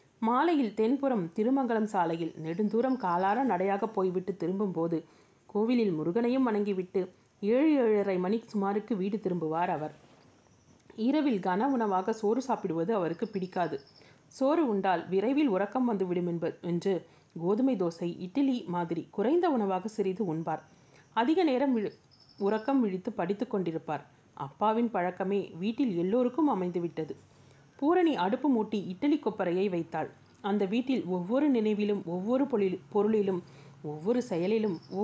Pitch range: 175-235 Hz